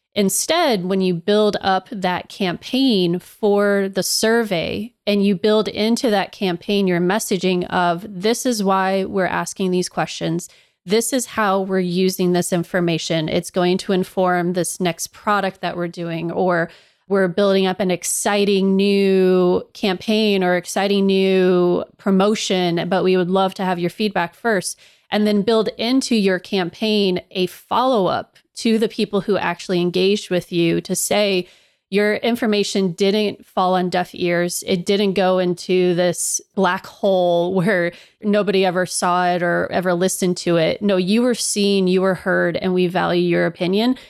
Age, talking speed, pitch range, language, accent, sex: 30-49, 160 wpm, 180-210 Hz, English, American, female